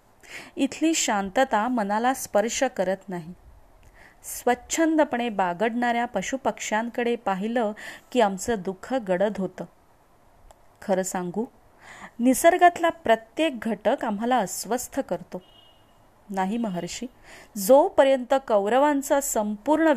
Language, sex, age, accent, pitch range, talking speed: Marathi, female, 30-49, native, 195-260 Hz, 80 wpm